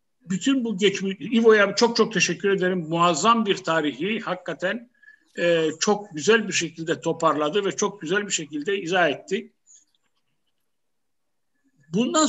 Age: 60-79